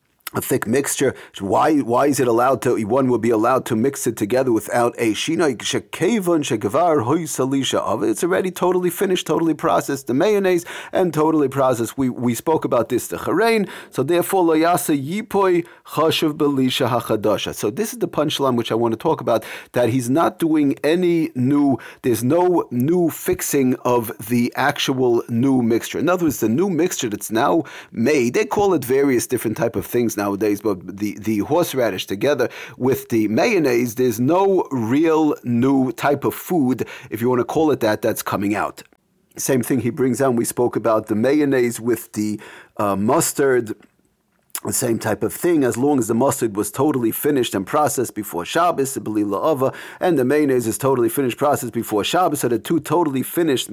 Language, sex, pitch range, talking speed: English, male, 120-165 Hz, 185 wpm